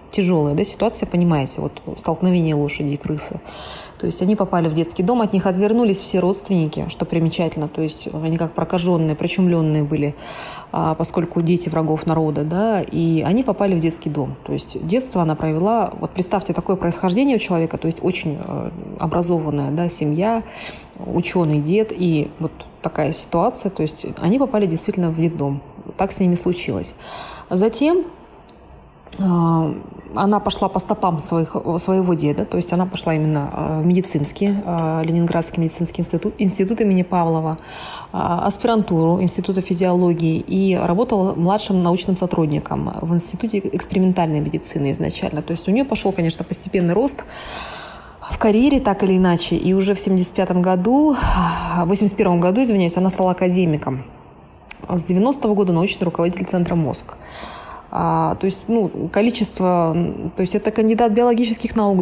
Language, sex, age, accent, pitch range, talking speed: Russian, female, 20-39, native, 165-200 Hz, 150 wpm